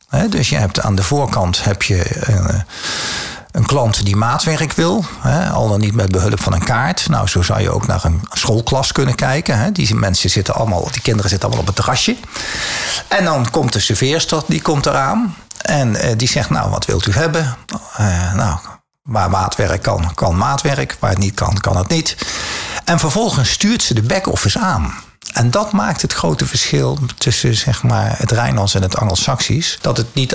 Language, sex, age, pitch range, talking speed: Dutch, male, 50-69, 110-150 Hz, 195 wpm